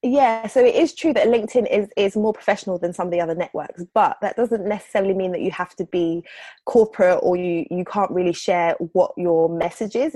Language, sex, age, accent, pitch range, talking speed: English, female, 20-39, British, 170-205 Hz, 225 wpm